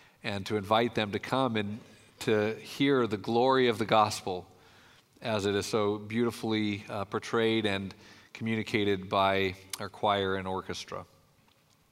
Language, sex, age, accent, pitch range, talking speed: English, male, 40-59, American, 115-145 Hz, 140 wpm